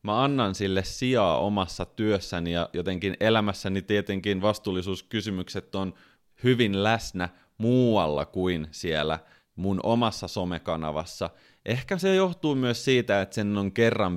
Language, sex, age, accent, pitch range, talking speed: Finnish, male, 30-49, native, 90-110 Hz, 125 wpm